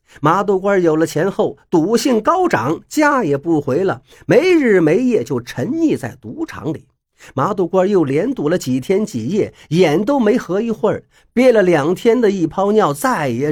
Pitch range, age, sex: 170-255 Hz, 50-69, male